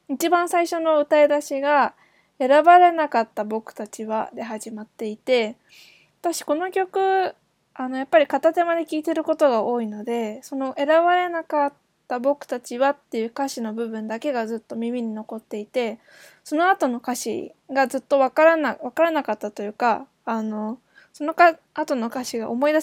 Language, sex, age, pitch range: Japanese, female, 20-39, 230-300 Hz